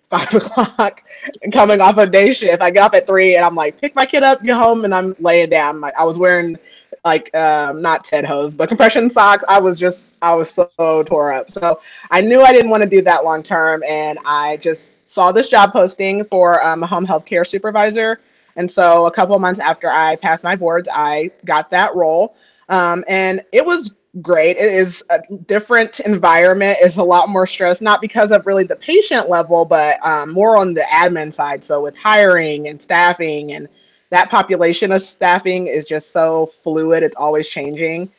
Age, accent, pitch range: 30-49, American, 160-205 Hz